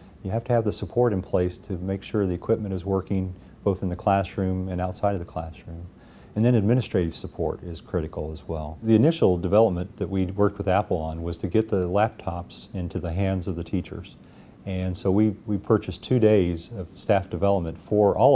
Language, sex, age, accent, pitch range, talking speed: English, male, 40-59, American, 90-105 Hz, 210 wpm